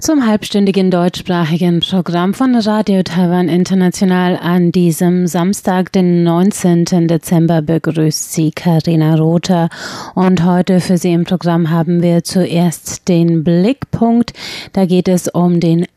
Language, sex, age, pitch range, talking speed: German, female, 30-49, 170-200 Hz, 130 wpm